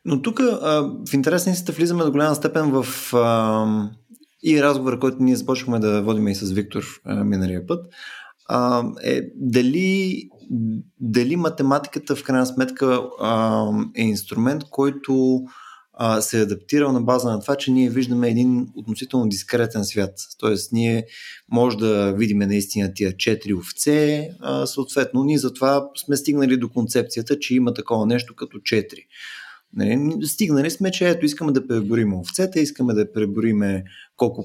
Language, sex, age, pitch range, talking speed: Bulgarian, male, 20-39, 110-150 Hz, 150 wpm